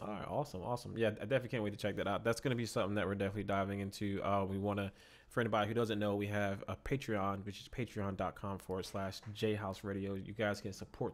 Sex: male